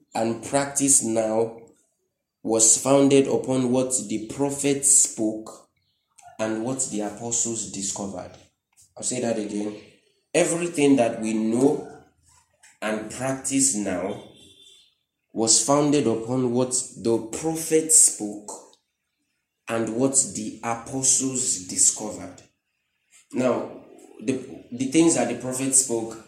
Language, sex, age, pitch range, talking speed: English, male, 20-39, 105-130 Hz, 105 wpm